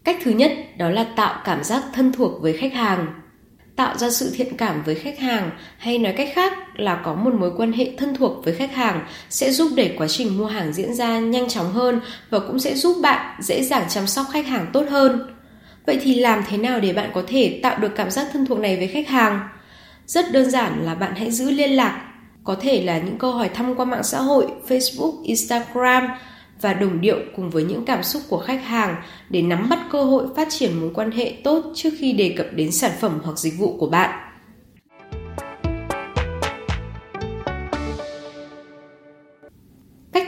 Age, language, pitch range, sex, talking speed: 10-29, Vietnamese, 185-265 Hz, female, 205 wpm